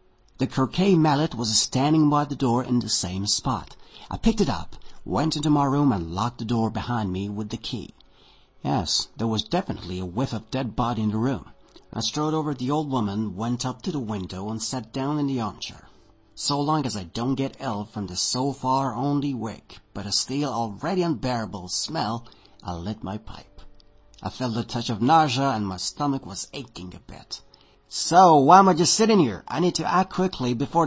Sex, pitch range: male, 105-145 Hz